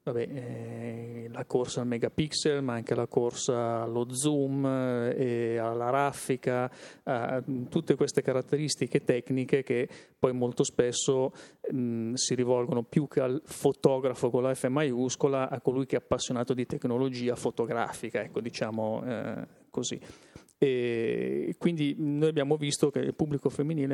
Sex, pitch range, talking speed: male, 120-140 Hz, 140 wpm